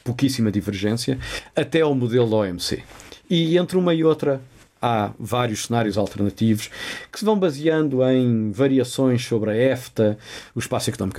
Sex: male